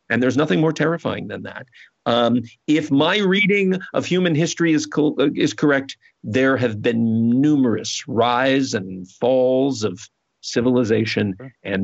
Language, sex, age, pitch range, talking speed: English, male, 50-69, 105-130 Hz, 140 wpm